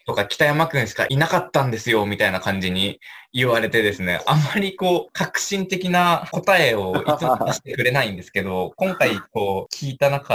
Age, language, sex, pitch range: 20-39, Japanese, male, 105-160 Hz